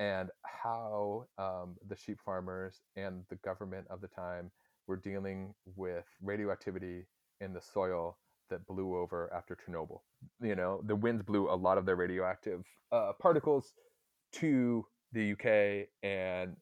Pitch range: 95-105 Hz